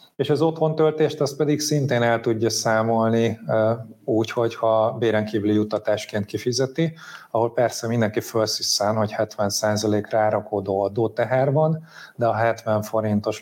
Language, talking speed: Hungarian, 125 wpm